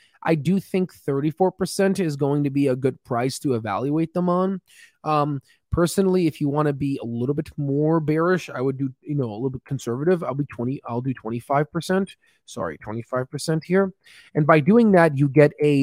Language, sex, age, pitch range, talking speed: English, male, 20-39, 130-170 Hz, 195 wpm